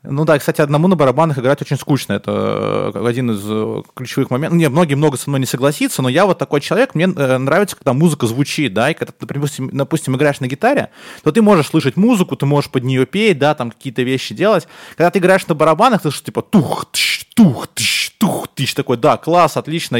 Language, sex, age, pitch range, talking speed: Russian, male, 20-39, 125-160 Hz, 210 wpm